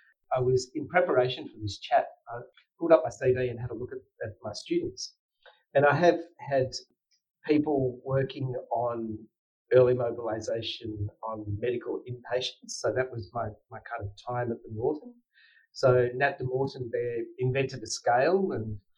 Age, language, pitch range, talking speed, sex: 40-59, English, 120-145 Hz, 170 wpm, male